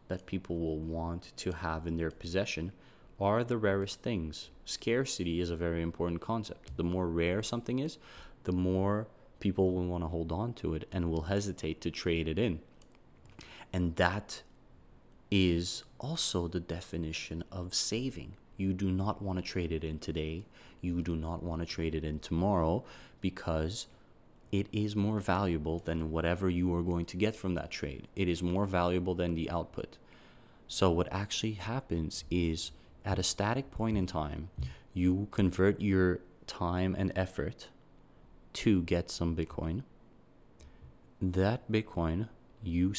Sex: male